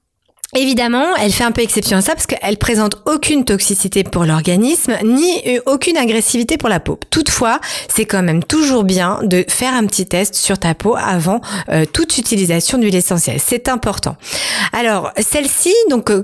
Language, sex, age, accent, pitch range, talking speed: French, female, 40-59, French, 195-255 Hz, 170 wpm